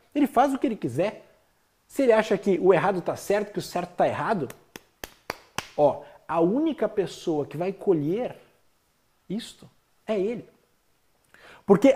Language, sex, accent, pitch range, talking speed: Portuguese, male, Brazilian, 175-265 Hz, 150 wpm